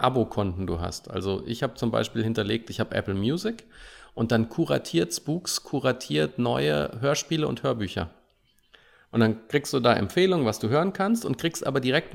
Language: German